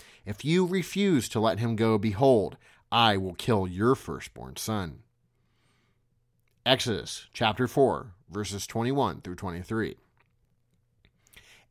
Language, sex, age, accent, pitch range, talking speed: English, male, 30-49, American, 105-130 Hz, 110 wpm